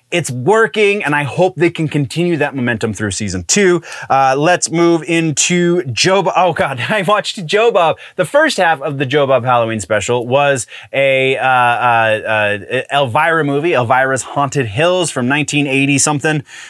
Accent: American